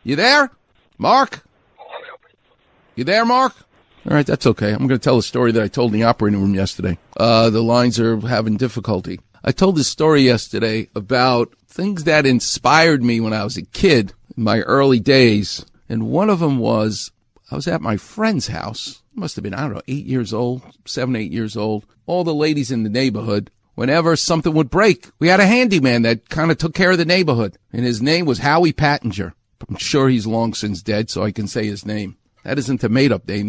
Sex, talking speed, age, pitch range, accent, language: male, 215 wpm, 50-69, 115-160 Hz, American, English